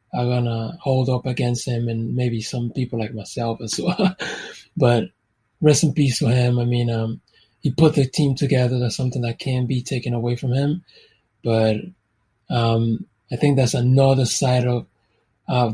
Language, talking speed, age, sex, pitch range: English, 170 wpm, 20-39, male, 120-140 Hz